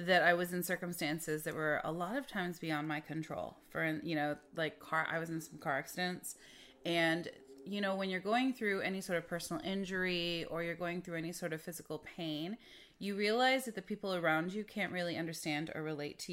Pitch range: 160-190 Hz